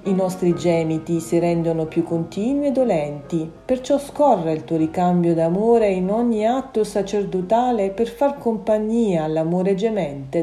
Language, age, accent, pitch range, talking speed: Italian, 40-59, native, 165-225 Hz, 140 wpm